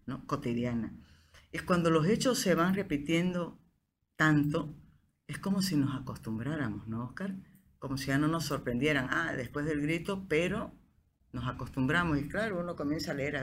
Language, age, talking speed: Spanish, 50-69, 165 wpm